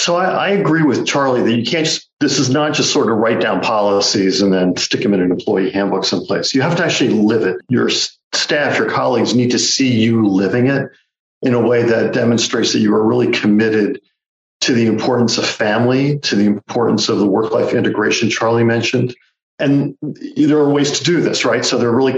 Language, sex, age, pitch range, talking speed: English, male, 50-69, 110-140 Hz, 215 wpm